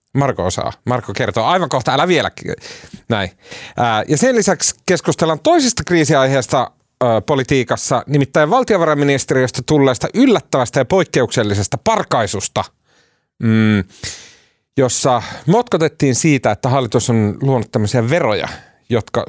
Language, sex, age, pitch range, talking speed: Finnish, male, 40-59, 105-145 Hz, 100 wpm